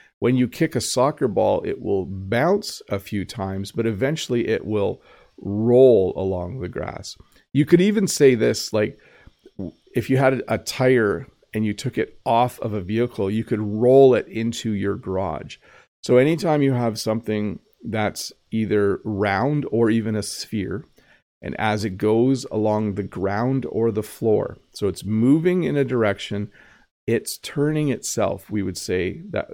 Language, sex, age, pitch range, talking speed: English, male, 40-59, 100-130 Hz, 165 wpm